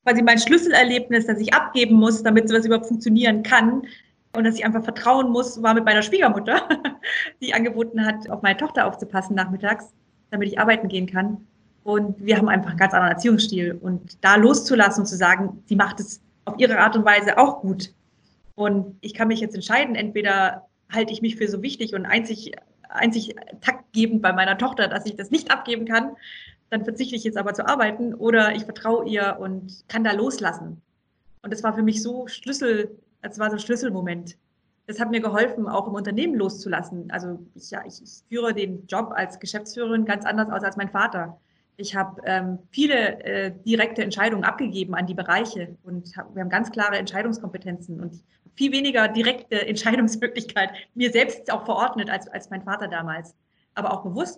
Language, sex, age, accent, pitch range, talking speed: German, female, 20-39, German, 195-230 Hz, 190 wpm